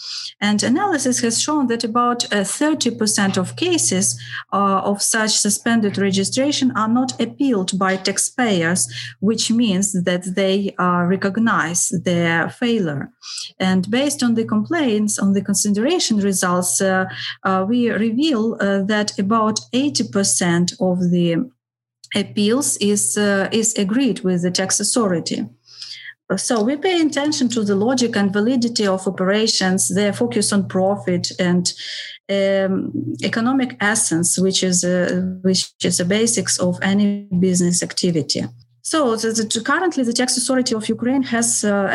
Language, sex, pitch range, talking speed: Polish, female, 185-230 Hz, 140 wpm